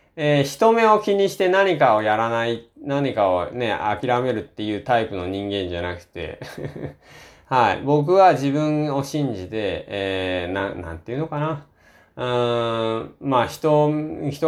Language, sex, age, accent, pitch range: Japanese, male, 20-39, native, 100-155 Hz